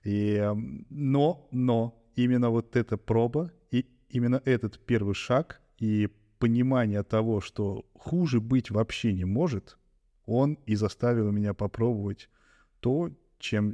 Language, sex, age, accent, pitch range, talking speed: Russian, male, 20-39, native, 105-125 Hz, 120 wpm